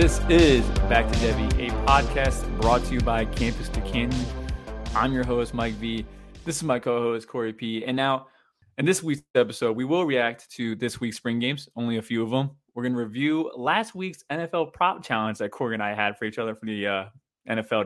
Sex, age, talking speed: male, 20-39, 220 wpm